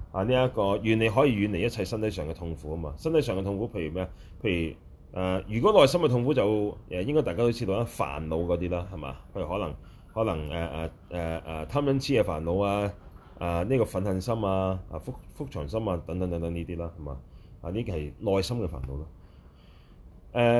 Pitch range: 80-105 Hz